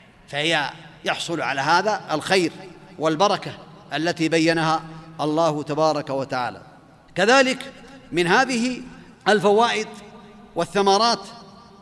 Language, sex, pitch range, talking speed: Arabic, male, 165-210 Hz, 80 wpm